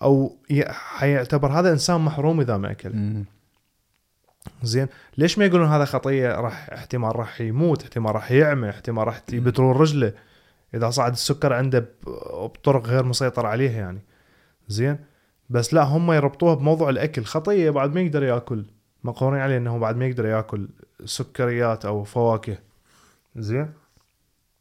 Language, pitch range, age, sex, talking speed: Arabic, 115-150 Hz, 20-39, male, 135 wpm